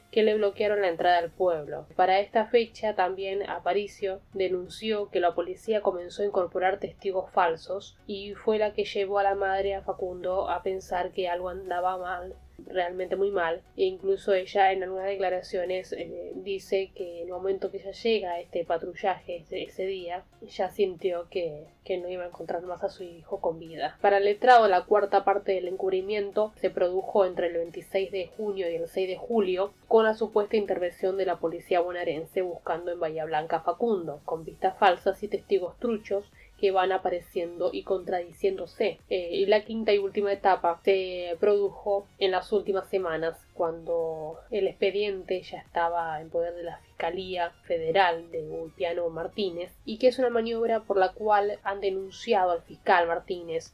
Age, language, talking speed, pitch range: 10-29, Spanish, 180 wpm, 175-200 Hz